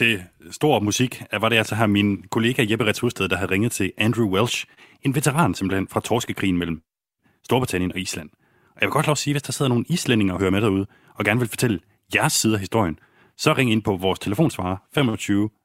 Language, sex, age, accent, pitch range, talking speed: Danish, male, 30-49, native, 95-135 Hz, 220 wpm